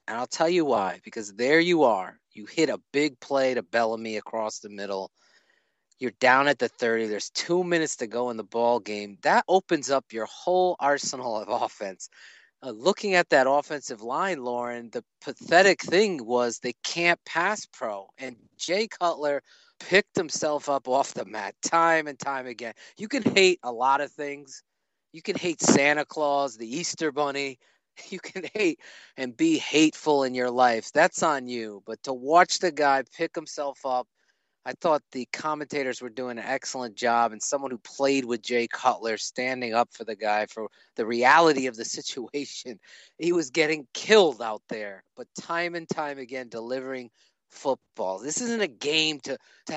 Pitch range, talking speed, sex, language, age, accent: 120-165 Hz, 180 wpm, male, English, 30-49, American